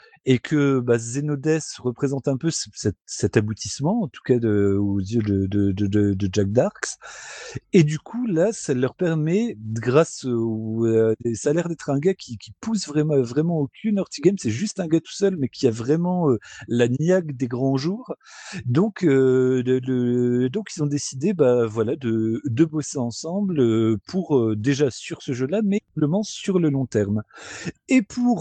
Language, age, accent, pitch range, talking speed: French, 40-59, French, 120-170 Hz, 190 wpm